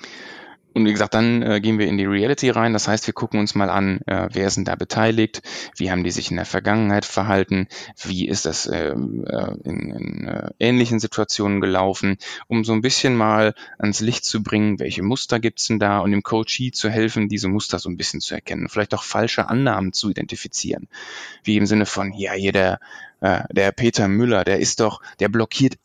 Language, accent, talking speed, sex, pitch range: German, German, 210 wpm, male, 100-115 Hz